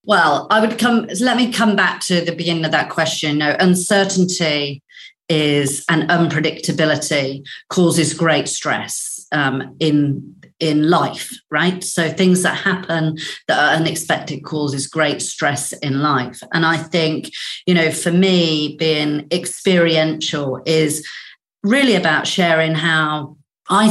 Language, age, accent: English, 40-59, British